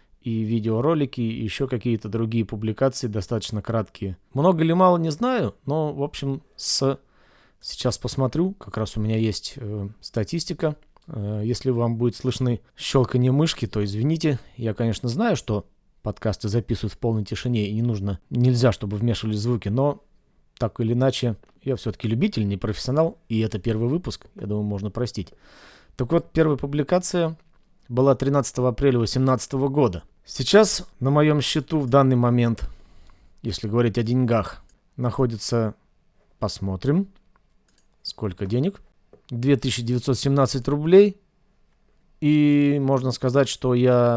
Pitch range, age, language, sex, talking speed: 110-140 Hz, 30-49, Russian, male, 135 wpm